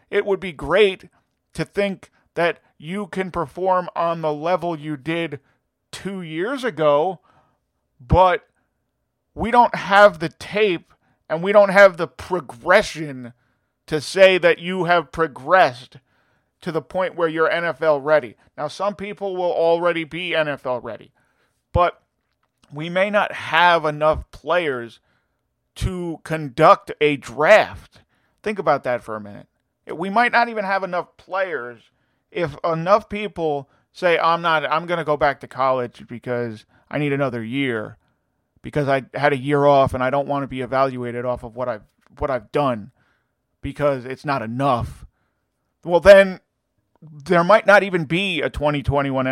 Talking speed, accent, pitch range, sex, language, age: 155 wpm, American, 140-185 Hz, male, English, 40-59